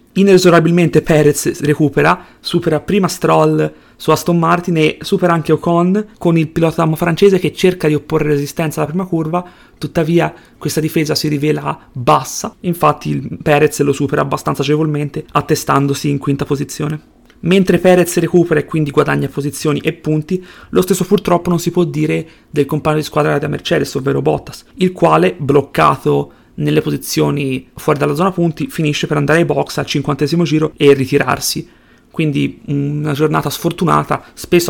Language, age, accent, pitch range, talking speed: Italian, 30-49, native, 145-175 Hz, 155 wpm